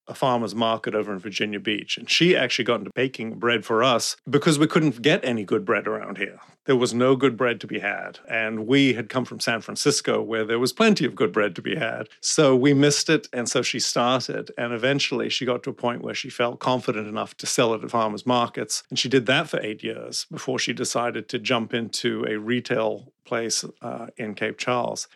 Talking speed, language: 230 wpm, English